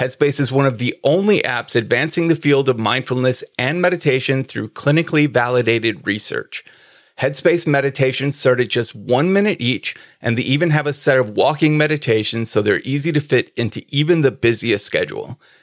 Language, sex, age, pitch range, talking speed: English, male, 30-49, 115-145 Hz, 175 wpm